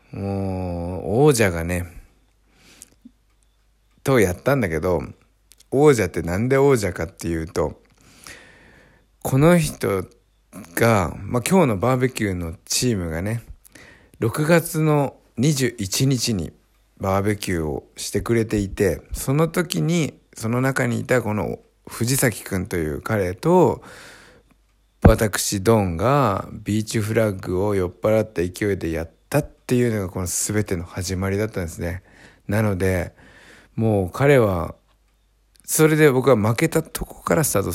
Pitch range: 95-135 Hz